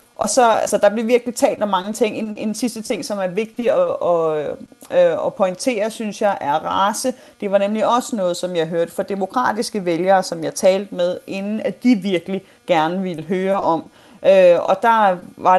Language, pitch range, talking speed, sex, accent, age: Danish, 180-230 Hz, 195 wpm, female, native, 30-49